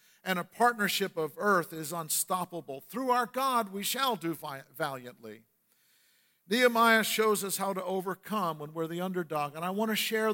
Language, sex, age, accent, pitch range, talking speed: English, male, 50-69, American, 145-190 Hz, 170 wpm